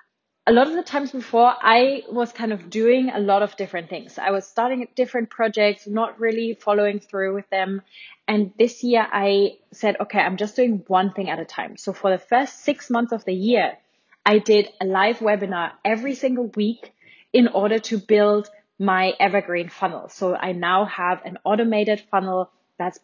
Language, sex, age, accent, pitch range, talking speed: English, female, 20-39, German, 190-235 Hz, 190 wpm